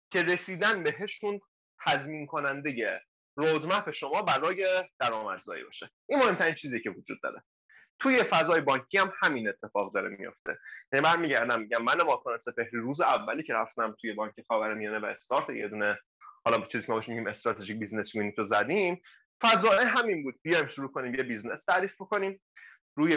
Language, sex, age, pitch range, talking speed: Persian, male, 20-39, 135-205 Hz, 165 wpm